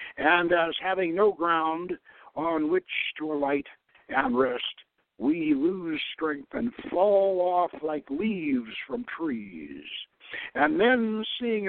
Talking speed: 125 wpm